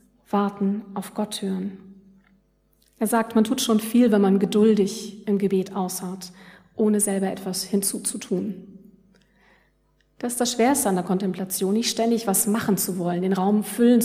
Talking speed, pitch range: 155 wpm, 195-230 Hz